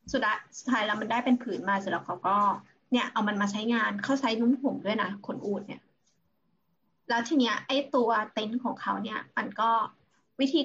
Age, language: 20-39, Thai